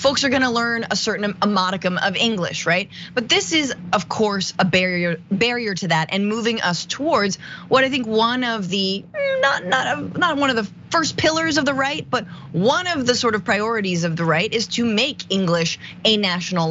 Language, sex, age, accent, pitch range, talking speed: English, female, 20-39, American, 175-260 Hz, 210 wpm